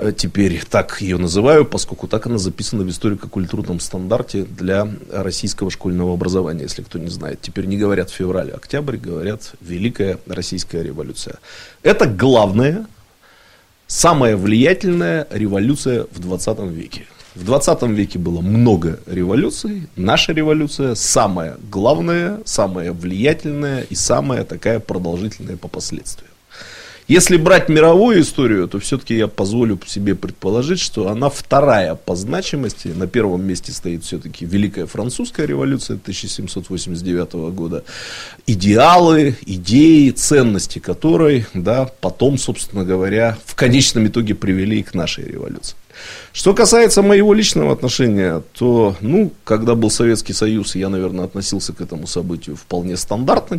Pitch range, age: 90-135 Hz, 30-49